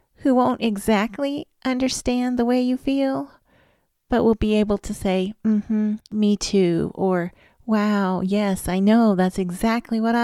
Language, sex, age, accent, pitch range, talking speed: English, female, 40-59, American, 180-215 Hz, 150 wpm